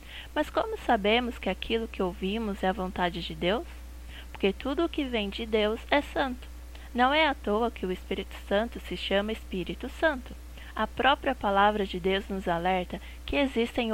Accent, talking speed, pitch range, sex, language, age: Brazilian, 180 wpm, 185-230 Hz, female, Portuguese, 20-39